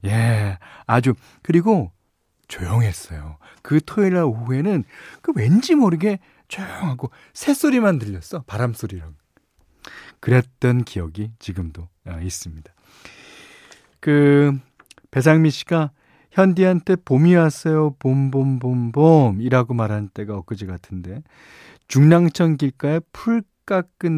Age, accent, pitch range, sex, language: 40-59, native, 105-160 Hz, male, Korean